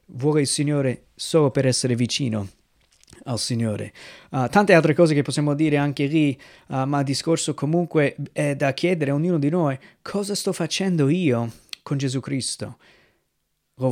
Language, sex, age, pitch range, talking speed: Italian, male, 30-49, 130-155 Hz, 155 wpm